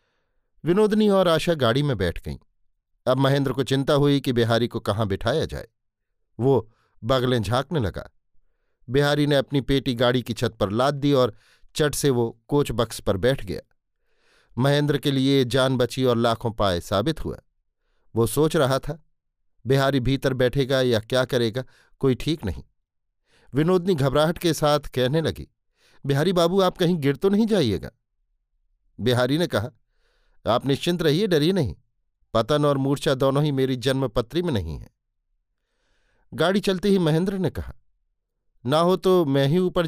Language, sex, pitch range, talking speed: Hindi, male, 120-160 Hz, 160 wpm